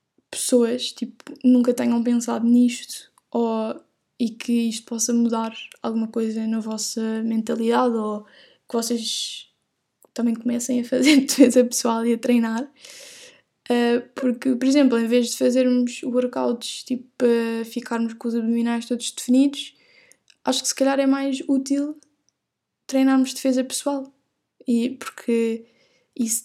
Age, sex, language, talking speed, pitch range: 10-29, female, Portuguese, 125 wpm, 230-260 Hz